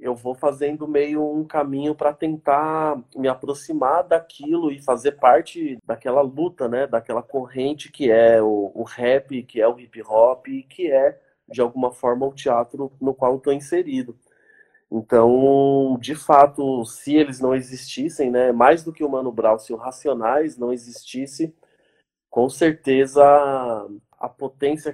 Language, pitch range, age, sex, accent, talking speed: Portuguese, 125-150 Hz, 20-39, male, Brazilian, 155 wpm